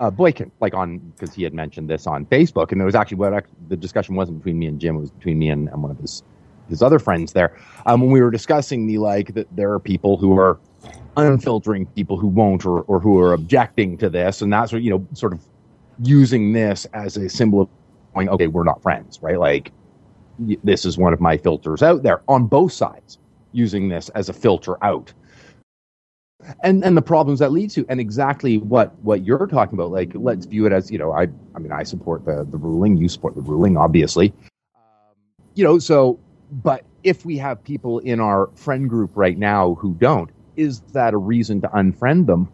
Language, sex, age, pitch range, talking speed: English, male, 30-49, 95-125 Hz, 220 wpm